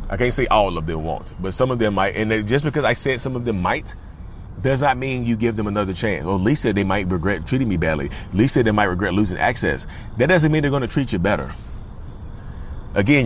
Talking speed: 245 wpm